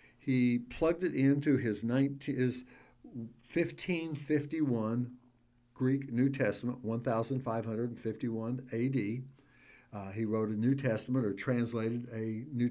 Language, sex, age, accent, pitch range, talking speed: English, male, 60-79, American, 120-145 Hz, 100 wpm